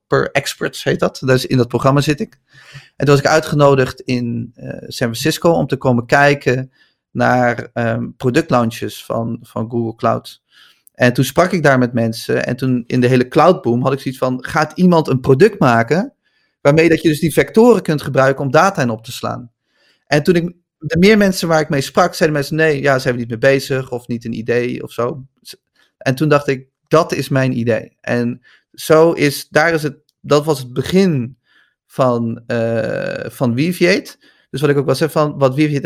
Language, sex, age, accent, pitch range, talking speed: Dutch, male, 30-49, Dutch, 125-155 Hz, 205 wpm